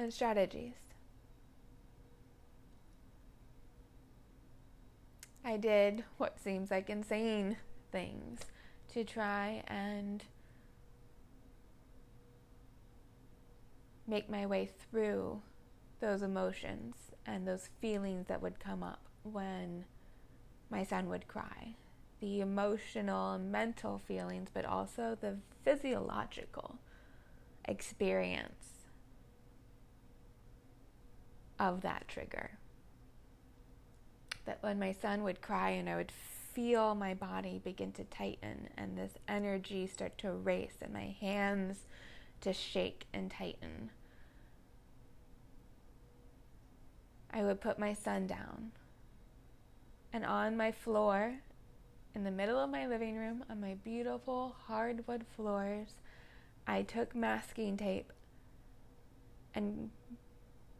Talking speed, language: 95 wpm, English